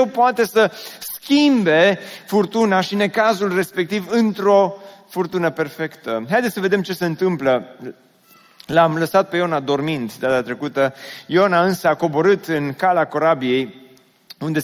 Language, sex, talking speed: Romanian, male, 130 wpm